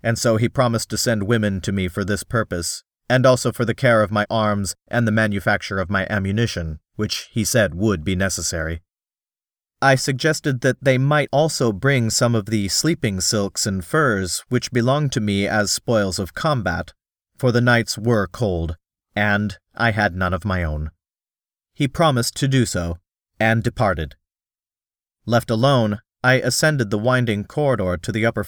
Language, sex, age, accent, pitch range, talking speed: English, male, 40-59, American, 100-125 Hz, 175 wpm